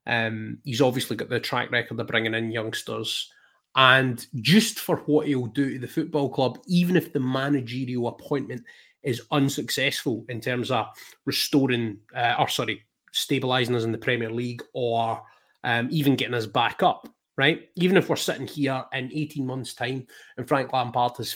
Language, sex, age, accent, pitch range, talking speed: English, male, 30-49, British, 120-140 Hz, 175 wpm